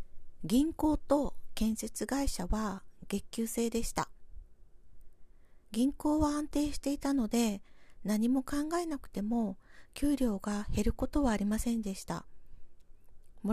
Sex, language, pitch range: female, Japanese, 175-265 Hz